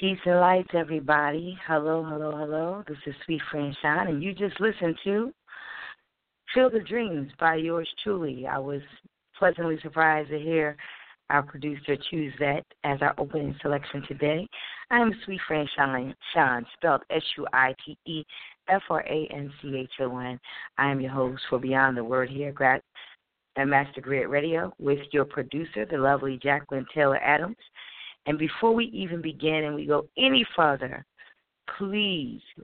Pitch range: 140-165 Hz